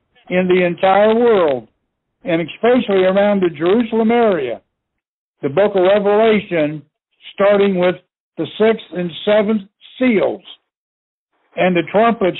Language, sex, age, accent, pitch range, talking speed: English, male, 60-79, American, 170-210 Hz, 115 wpm